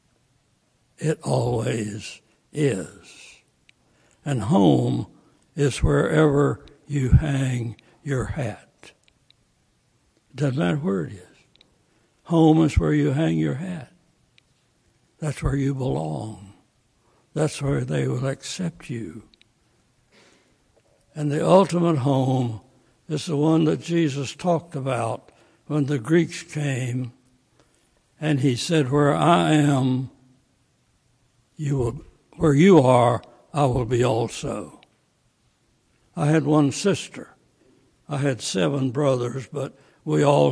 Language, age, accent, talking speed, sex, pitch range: English, 60-79, American, 110 wpm, male, 125-155 Hz